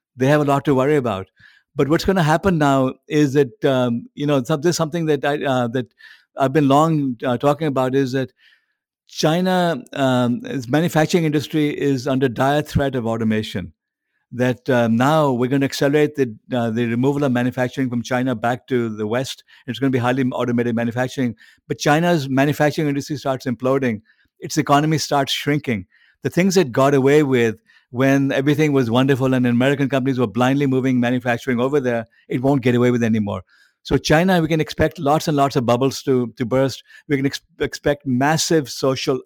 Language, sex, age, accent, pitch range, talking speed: English, male, 60-79, Indian, 125-145 Hz, 190 wpm